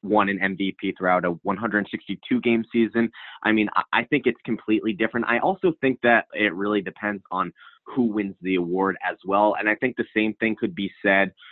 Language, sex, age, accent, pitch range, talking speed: English, male, 20-39, American, 95-110 Hz, 200 wpm